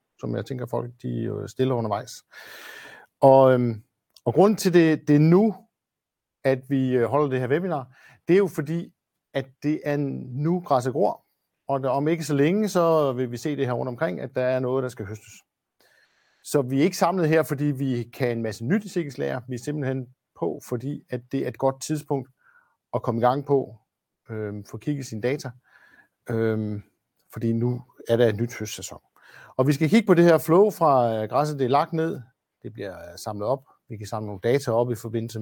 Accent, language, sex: native, Danish, male